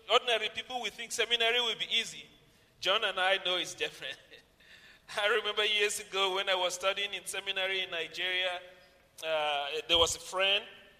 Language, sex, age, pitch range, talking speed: English, male, 40-59, 160-215 Hz, 170 wpm